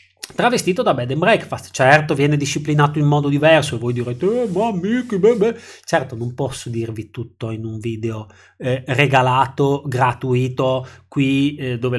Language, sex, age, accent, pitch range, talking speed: Italian, male, 30-49, native, 125-165 Hz, 150 wpm